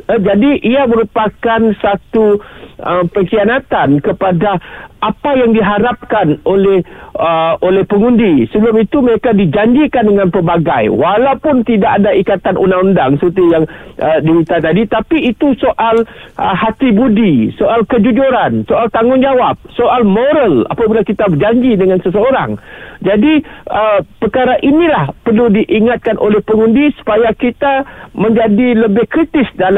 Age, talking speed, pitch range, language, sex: 50-69, 125 wpm, 185-235 Hz, Malay, male